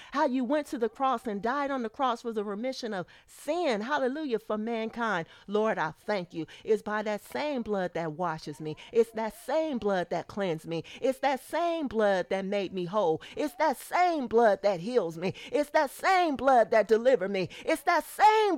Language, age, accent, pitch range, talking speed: English, 40-59, American, 195-290 Hz, 205 wpm